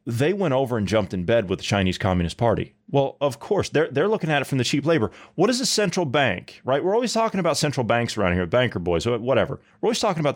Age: 30-49